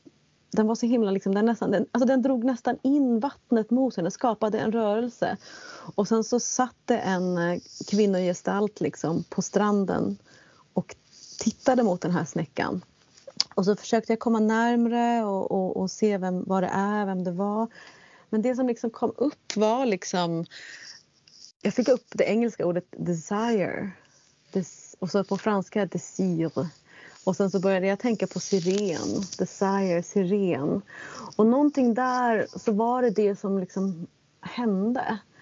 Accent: native